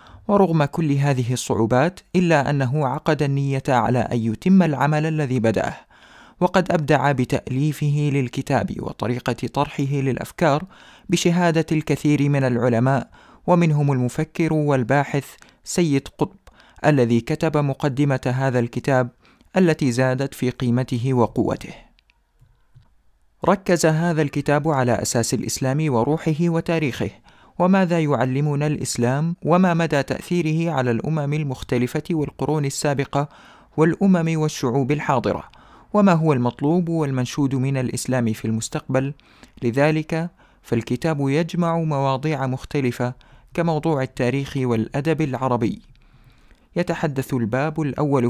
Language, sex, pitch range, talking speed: Arabic, male, 125-160 Hz, 100 wpm